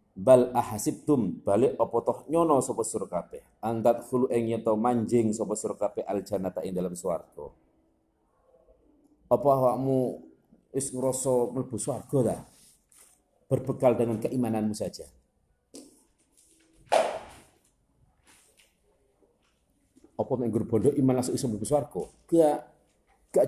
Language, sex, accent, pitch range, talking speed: Indonesian, male, native, 100-120 Hz, 100 wpm